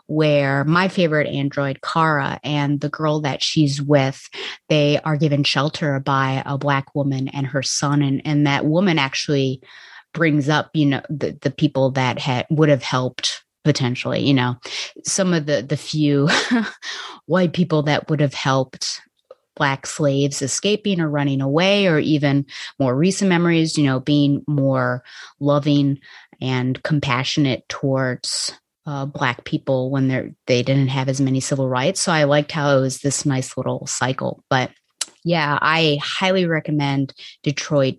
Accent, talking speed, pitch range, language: American, 160 wpm, 135-160 Hz, English